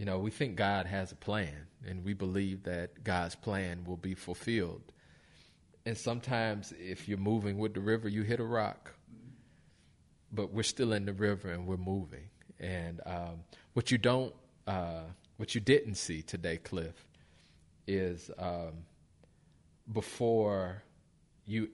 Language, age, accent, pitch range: English, 40-59, American, 90-110 Hz